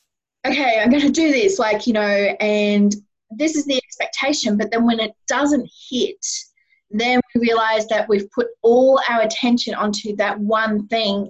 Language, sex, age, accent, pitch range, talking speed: English, female, 20-39, Australian, 205-255 Hz, 175 wpm